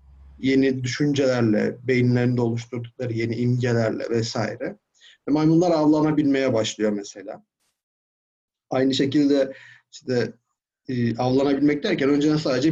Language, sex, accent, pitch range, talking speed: Turkish, male, native, 120-155 Hz, 95 wpm